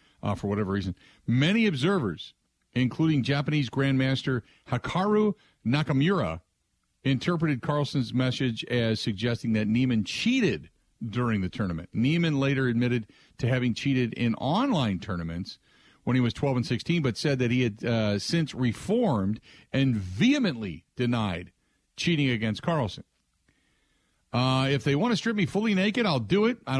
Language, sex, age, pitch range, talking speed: English, male, 50-69, 105-150 Hz, 145 wpm